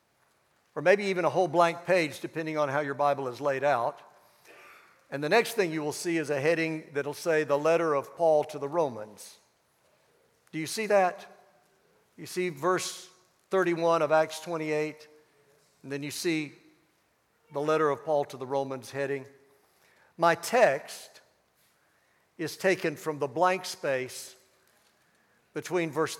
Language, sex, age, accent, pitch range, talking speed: English, male, 60-79, American, 130-170 Hz, 155 wpm